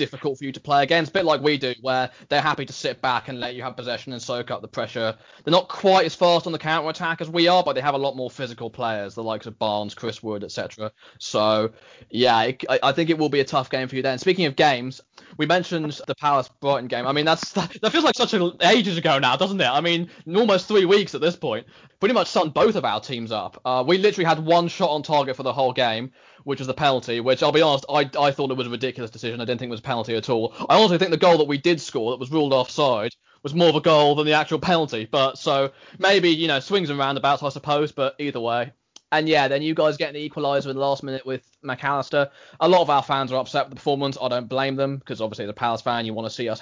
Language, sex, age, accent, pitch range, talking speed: English, male, 20-39, British, 125-165 Hz, 280 wpm